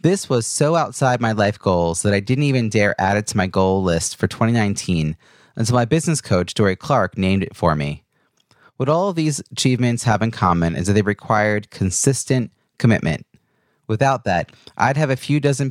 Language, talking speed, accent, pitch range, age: English, 200 wpm, American, 100-135 Hz, 30-49